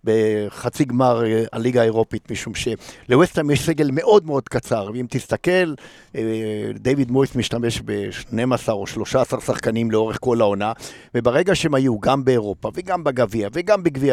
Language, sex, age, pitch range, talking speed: Hebrew, male, 50-69, 120-150 Hz, 135 wpm